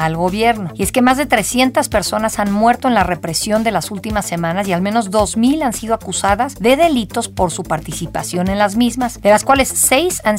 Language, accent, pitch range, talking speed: Spanish, Mexican, 180-245 Hz, 220 wpm